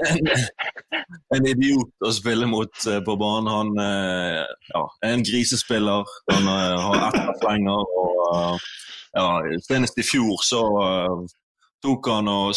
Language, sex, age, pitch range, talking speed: English, male, 20-39, 100-120 Hz, 135 wpm